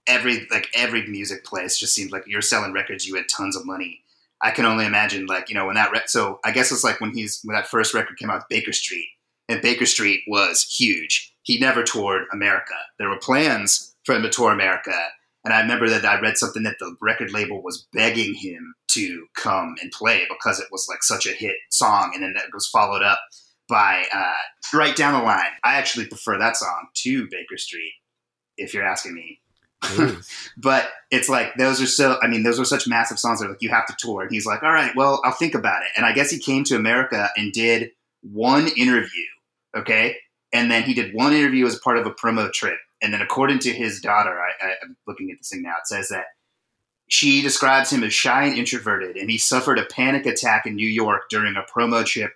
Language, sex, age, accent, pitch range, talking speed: English, male, 30-49, American, 110-140 Hz, 230 wpm